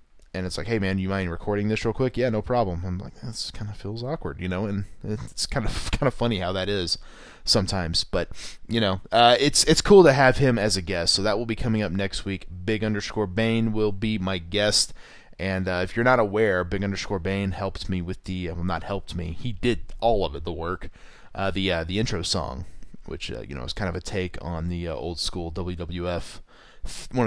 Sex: male